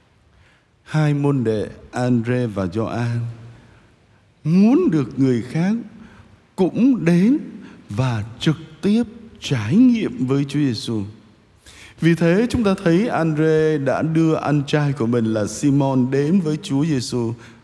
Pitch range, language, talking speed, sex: 110-160 Hz, Vietnamese, 130 wpm, male